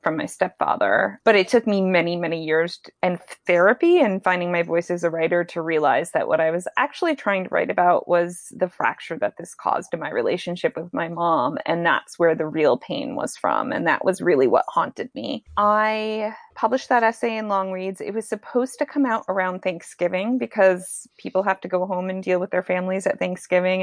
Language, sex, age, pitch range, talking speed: English, female, 20-39, 175-210 Hz, 215 wpm